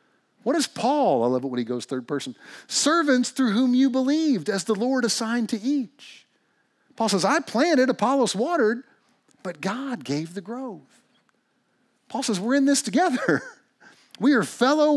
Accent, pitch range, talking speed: American, 175-260 Hz, 170 wpm